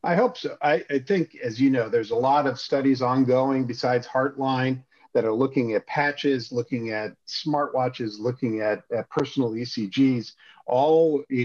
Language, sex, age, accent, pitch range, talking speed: English, male, 50-69, American, 115-140 Hz, 170 wpm